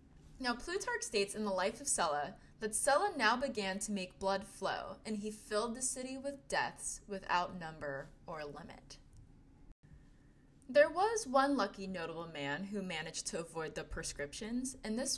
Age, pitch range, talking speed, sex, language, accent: 20-39, 180-250 Hz, 160 wpm, female, English, American